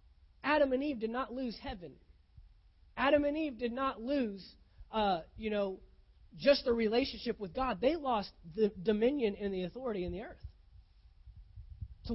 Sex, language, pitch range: male, English, 175-240 Hz